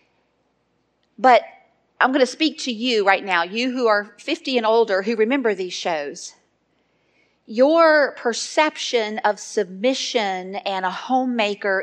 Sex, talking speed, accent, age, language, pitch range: female, 130 wpm, American, 40-59, English, 215-260 Hz